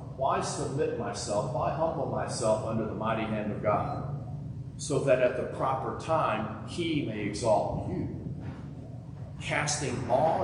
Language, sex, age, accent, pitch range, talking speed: English, male, 40-59, American, 125-170 Hz, 140 wpm